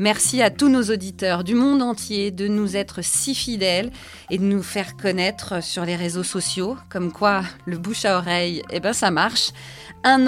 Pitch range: 180-235 Hz